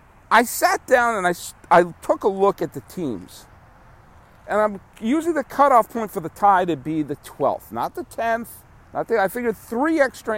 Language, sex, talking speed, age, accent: English, male, 195 wpm, 50-69, American